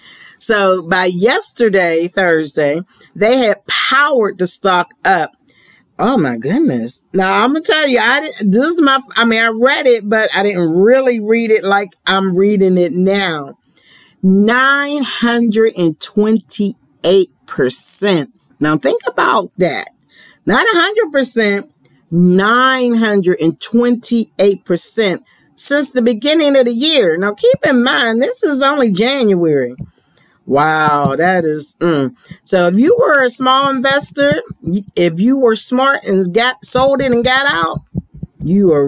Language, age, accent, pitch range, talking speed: English, 50-69, American, 175-245 Hz, 130 wpm